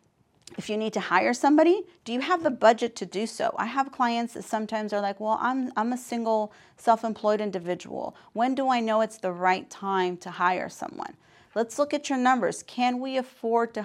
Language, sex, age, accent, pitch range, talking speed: English, female, 40-59, American, 190-240 Hz, 210 wpm